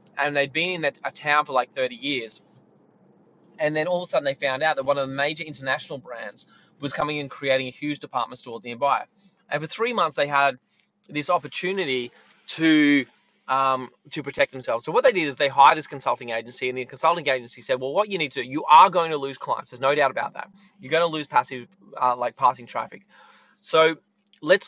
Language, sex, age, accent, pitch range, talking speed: English, male, 20-39, Australian, 130-180 Hz, 225 wpm